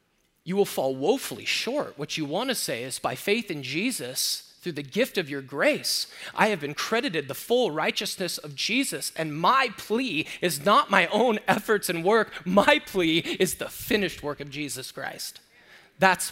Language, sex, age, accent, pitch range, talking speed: English, male, 30-49, American, 160-225 Hz, 180 wpm